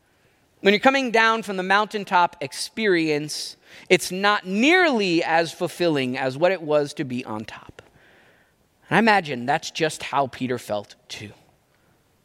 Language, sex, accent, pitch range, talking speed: English, male, American, 165-220 Hz, 145 wpm